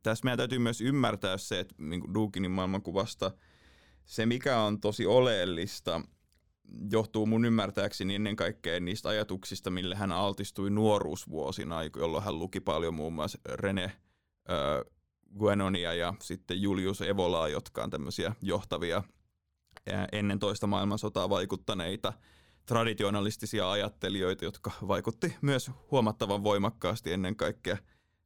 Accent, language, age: native, Finnish, 20-39